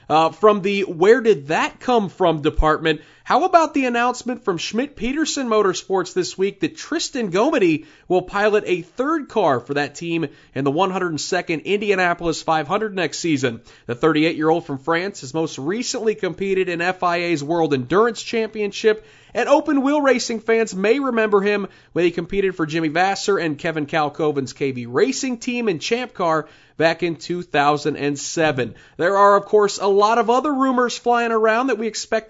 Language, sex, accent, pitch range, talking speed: English, male, American, 160-225 Hz, 170 wpm